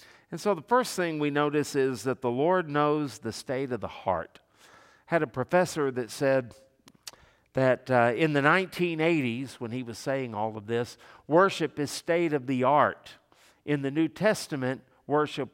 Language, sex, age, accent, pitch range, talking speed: English, male, 50-69, American, 130-170 Hz, 175 wpm